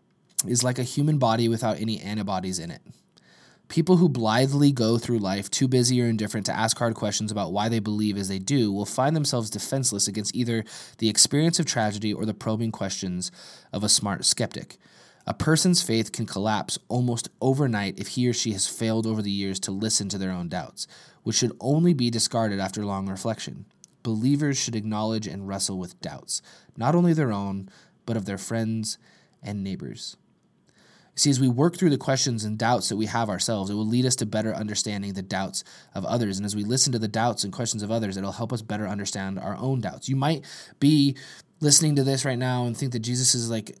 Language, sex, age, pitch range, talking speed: English, male, 20-39, 105-125 Hz, 210 wpm